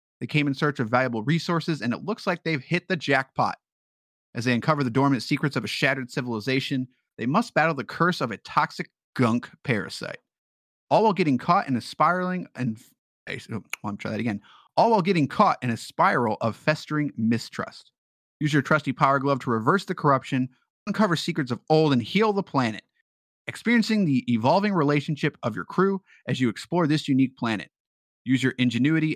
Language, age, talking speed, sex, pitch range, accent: English, 30-49, 185 wpm, male, 125-175 Hz, American